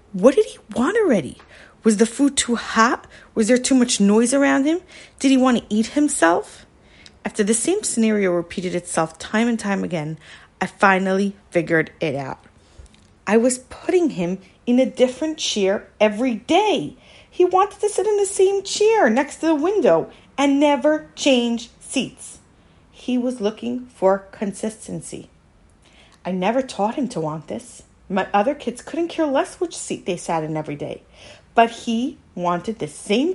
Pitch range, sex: 175-270 Hz, female